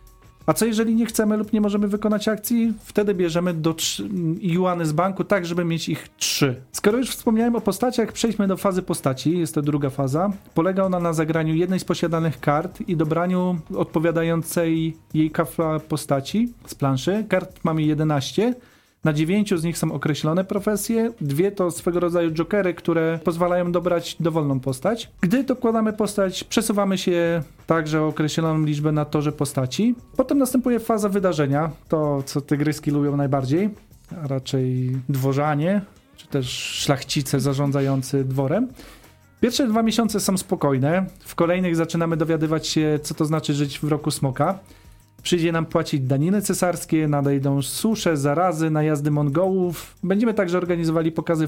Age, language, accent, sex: 40-59, Polish, native, male